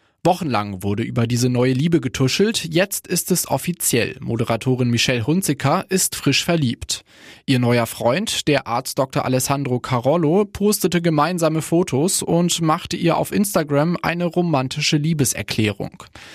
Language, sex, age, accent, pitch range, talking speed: German, male, 20-39, German, 125-170 Hz, 130 wpm